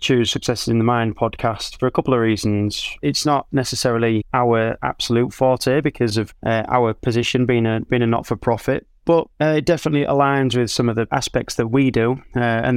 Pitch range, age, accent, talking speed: 115-135 Hz, 20-39, British, 205 wpm